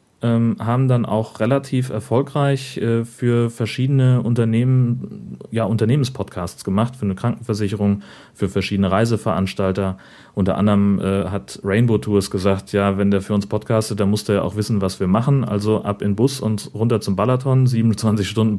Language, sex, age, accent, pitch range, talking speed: German, male, 40-59, German, 105-125 Hz, 160 wpm